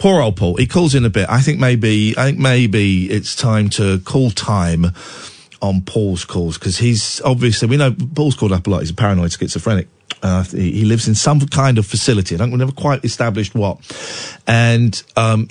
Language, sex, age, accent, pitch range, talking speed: English, male, 40-59, British, 105-145 Hz, 205 wpm